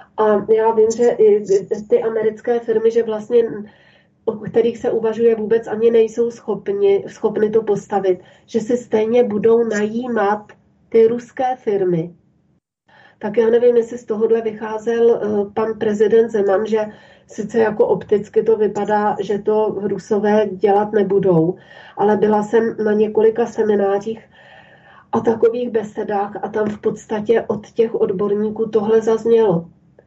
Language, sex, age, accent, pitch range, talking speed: Czech, female, 30-49, native, 205-230 Hz, 135 wpm